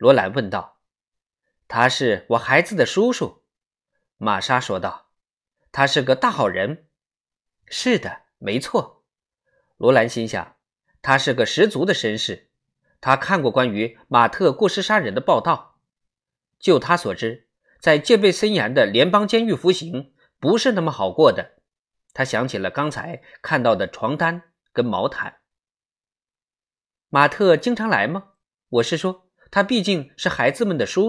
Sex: male